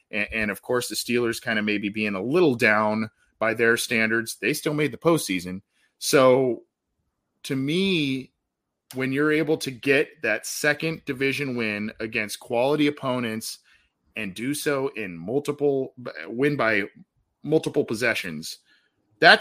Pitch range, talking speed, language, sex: 110-145 Hz, 140 wpm, English, male